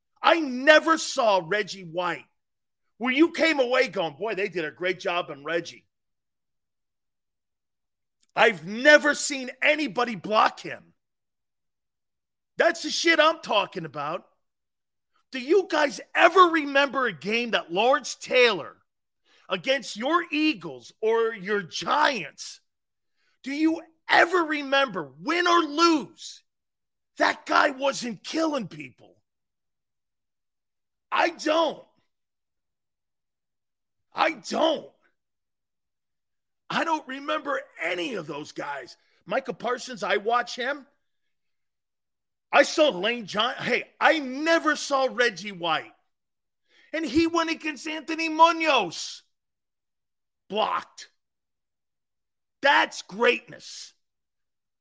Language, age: English, 40-59